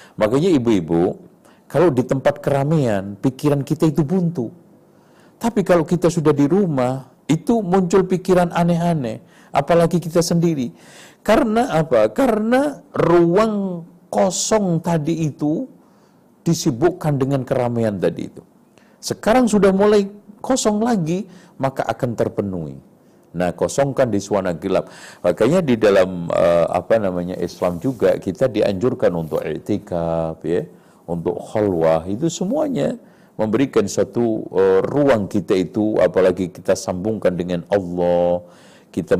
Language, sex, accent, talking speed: Indonesian, male, native, 115 wpm